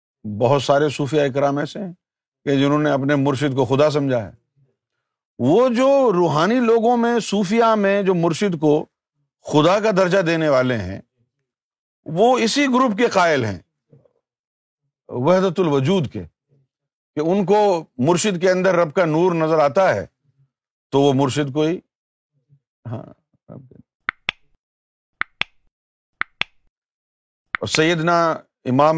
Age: 50-69